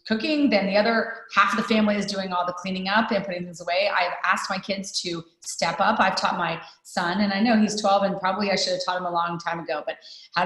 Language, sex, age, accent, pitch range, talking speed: English, female, 30-49, American, 185-230 Hz, 270 wpm